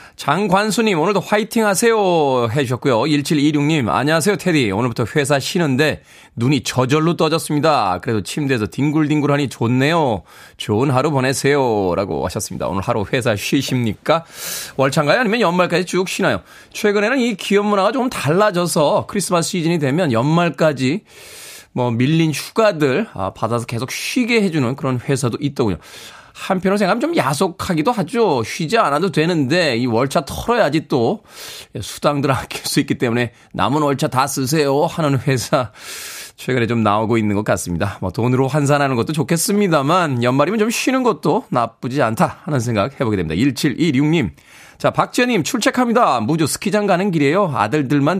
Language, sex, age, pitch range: Korean, male, 20-39, 125-180 Hz